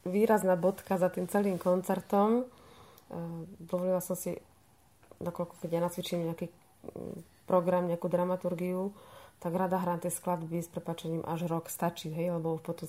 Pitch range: 165-180 Hz